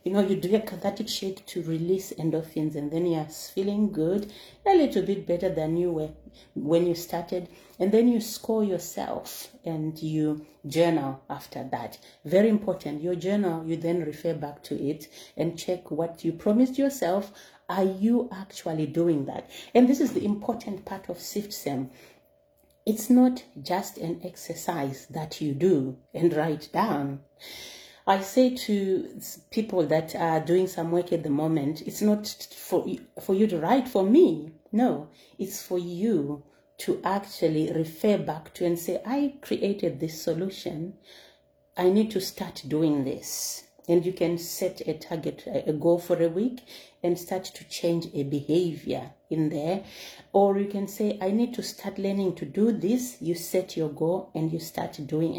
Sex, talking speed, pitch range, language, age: female, 170 wpm, 160-200 Hz, English, 40-59